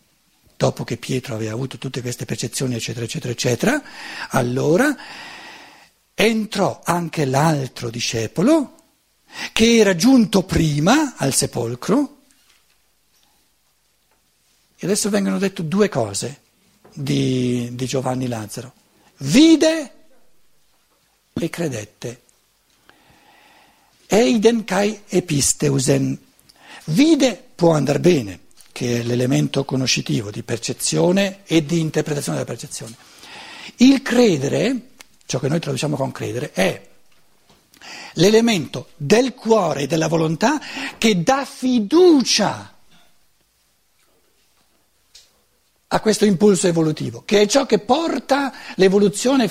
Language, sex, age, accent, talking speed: Italian, male, 60-79, native, 100 wpm